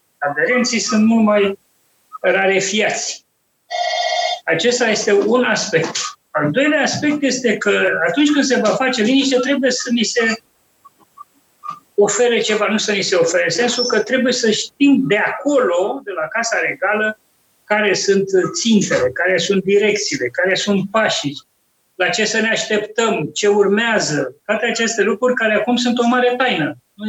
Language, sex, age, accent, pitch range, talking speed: Romanian, male, 30-49, native, 195-265 Hz, 150 wpm